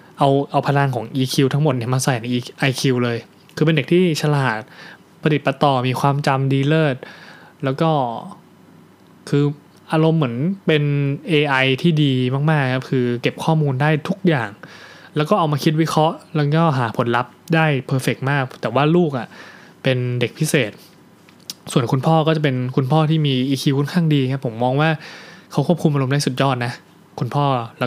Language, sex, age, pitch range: Thai, male, 20-39, 130-160 Hz